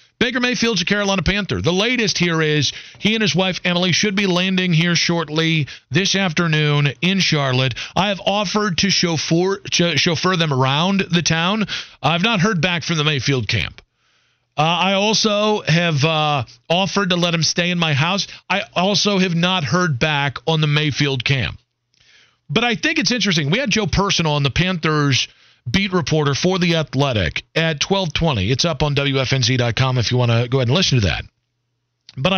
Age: 40-59